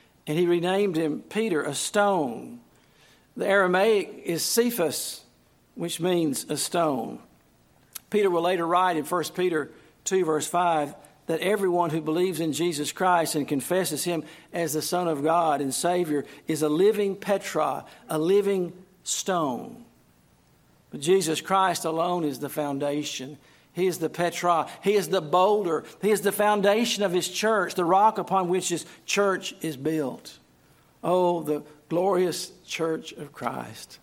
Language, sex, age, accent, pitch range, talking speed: English, male, 50-69, American, 150-180 Hz, 150 wpm